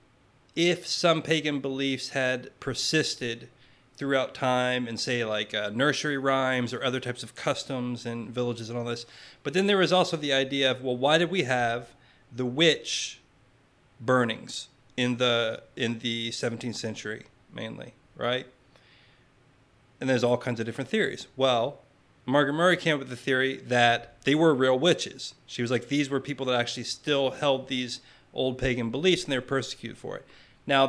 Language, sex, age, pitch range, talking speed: English, male, 30-49, 125-150 Hz, 175 wpm